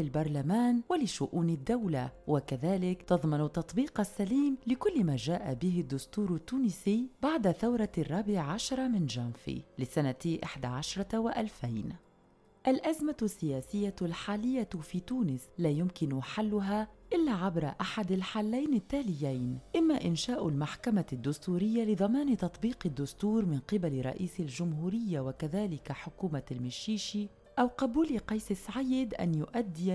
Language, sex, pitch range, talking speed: Arabic, female, 155-225 Hz, 110 wpm